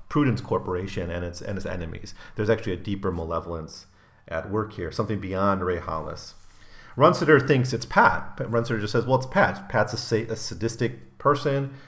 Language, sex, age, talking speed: English, male, 40-59, 175 wpm